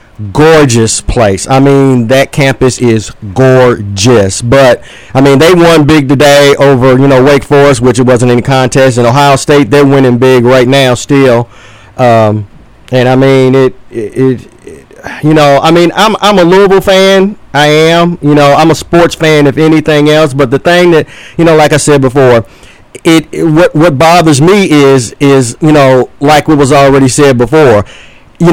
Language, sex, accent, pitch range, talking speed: English, male, American, 130-170 Hz, 185 wpm